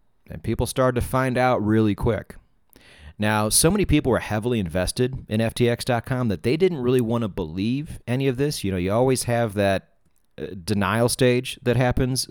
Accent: American